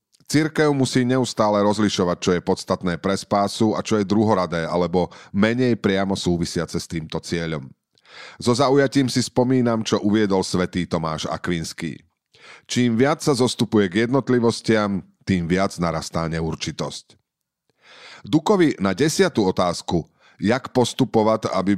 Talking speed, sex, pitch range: 125 wpm, male, 90-120 Hz